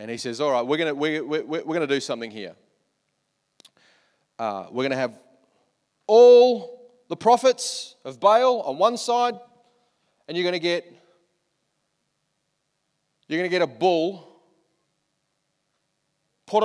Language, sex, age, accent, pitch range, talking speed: English, male, 30-49, Australian, 120-175 Hz, 150 wpm